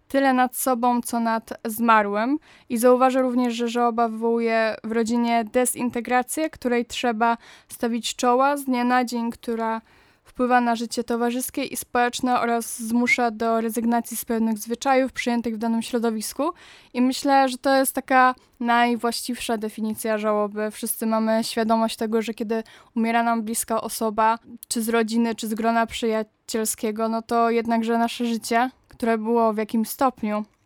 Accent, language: native, Polish